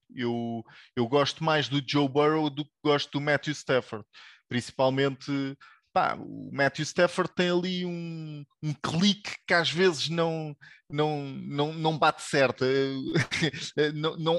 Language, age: English, 20-39